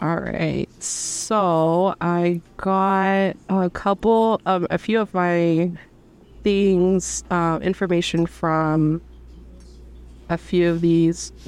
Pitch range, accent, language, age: 155-180 Hz, American, English, 20-39